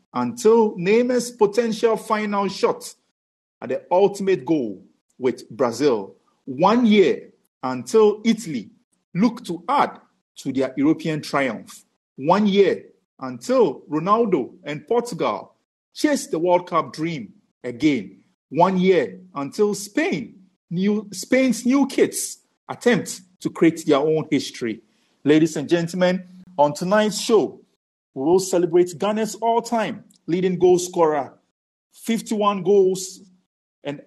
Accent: Nigerian